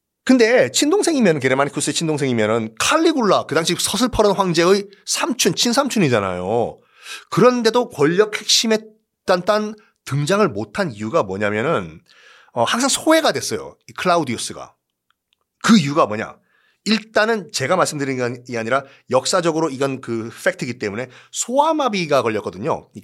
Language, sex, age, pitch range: Korean, male, 30-49, 130-210 Hz